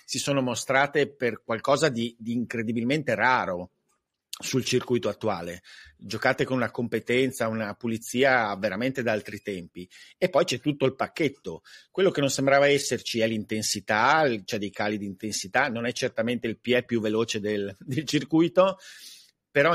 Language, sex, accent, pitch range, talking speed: Italian, male, native, 110-135 Hz, 155 wpm